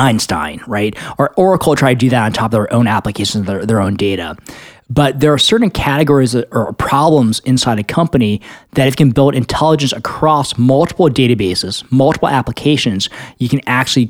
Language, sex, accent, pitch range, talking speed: English, male, American, 115-140 Hz, 180 wpm